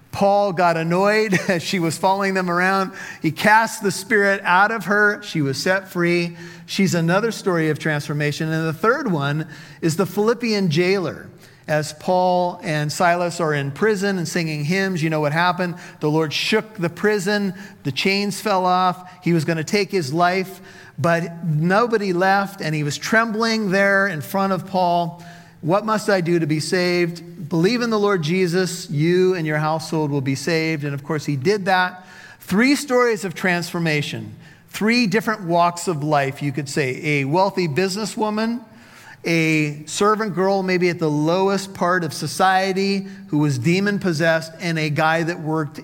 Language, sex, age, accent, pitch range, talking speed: English, male, 40-59, American, 155-195 Hz, 175 wpm